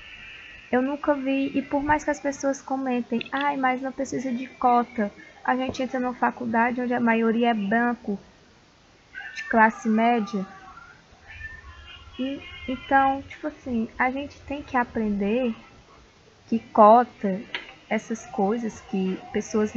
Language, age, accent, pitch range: Portuguese, 10-29, Brazilian, 200-255 Hz